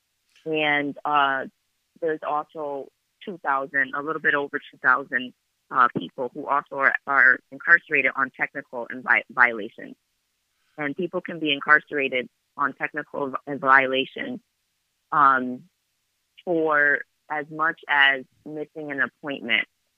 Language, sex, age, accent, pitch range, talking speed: English, female, 30-49, American, 135-155 Hz, 115 wpm